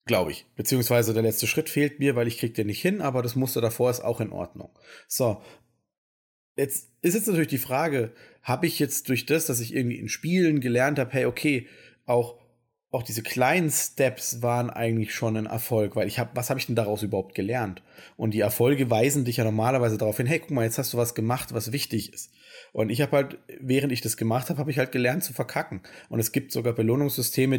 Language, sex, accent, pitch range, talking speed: German, male, German, 110-135 Hz, 225 wpm